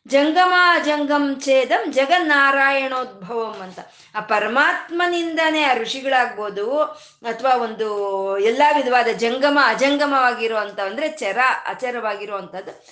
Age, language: 20-39, Kannada